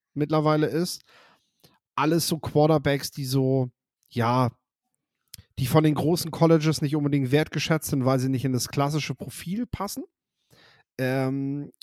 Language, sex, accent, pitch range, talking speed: German, male, German, 120-140 Hz, 130 wpm